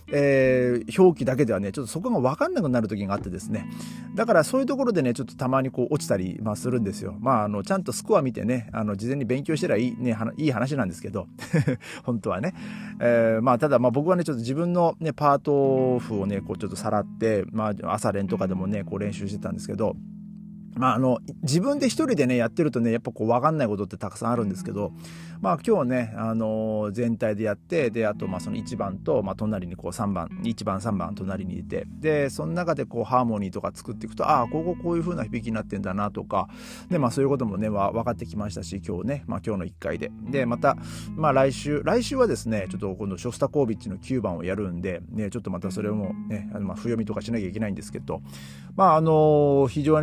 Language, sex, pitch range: Japanese, male, 105-140 Hz